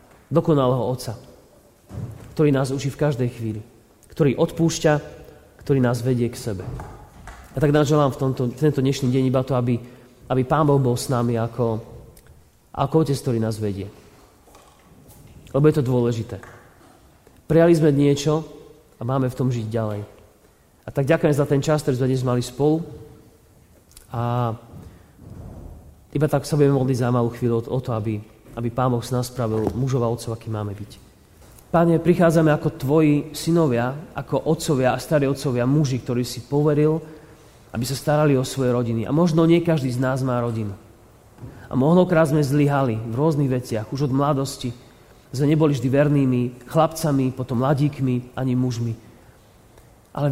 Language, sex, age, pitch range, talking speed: Slovak, male, 30-49, 115-145 Hz, 160 wpm